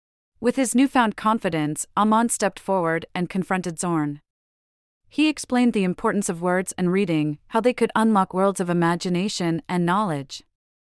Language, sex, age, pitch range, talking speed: English, female, 30-49, 170-220 Hz, 150 wpm